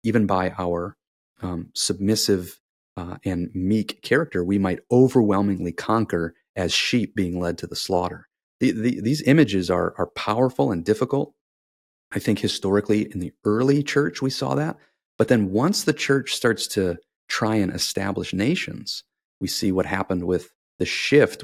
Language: English